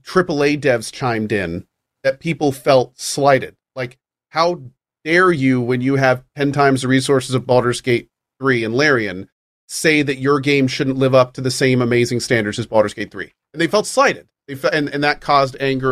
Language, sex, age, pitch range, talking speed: English, male, 40-59, 125-160 Hz, 195 wpm